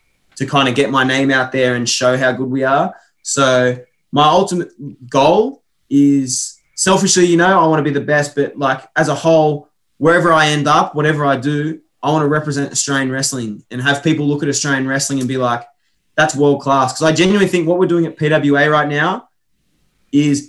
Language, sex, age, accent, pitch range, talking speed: English, male, 20-39, Australian, 135-155 Hz, 210 wpm